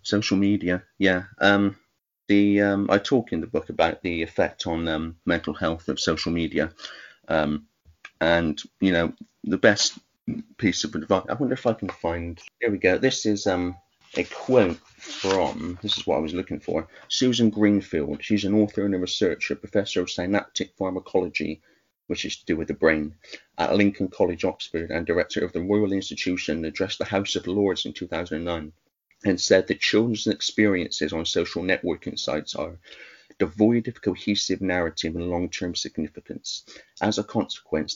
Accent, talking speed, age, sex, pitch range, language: British, 170 wpm, 30-49, male, 80-100 Hz, English